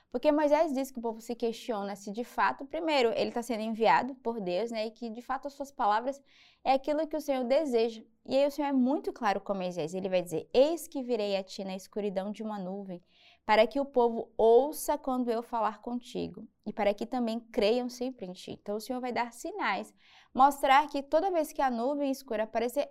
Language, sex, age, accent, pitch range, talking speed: Portuguese, female, 20-39, Brazilian, 220-285 Hz, 225 wpm